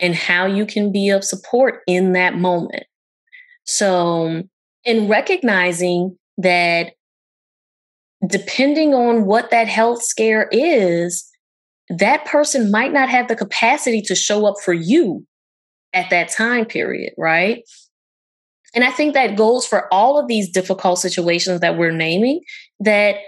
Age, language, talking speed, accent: 20-39, English, 135 wpm, American